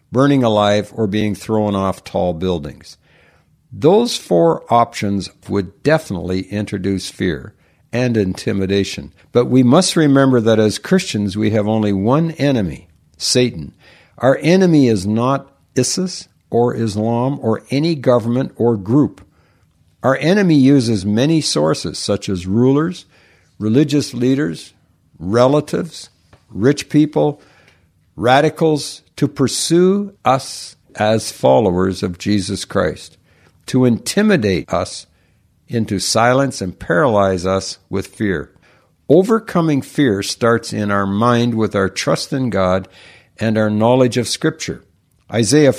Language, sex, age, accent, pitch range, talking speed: English, male, 60-79, American, 100-140 Hz, 120 wpm